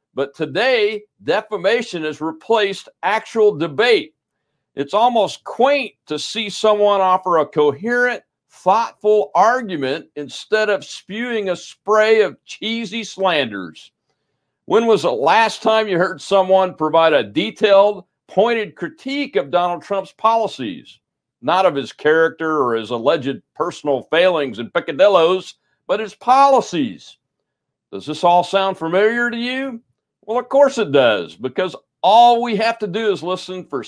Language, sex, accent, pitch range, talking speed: English, male, American, 150-220 Hz, 140 wpm